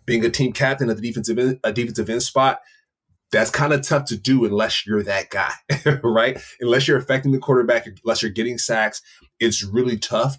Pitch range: 105-130 Hz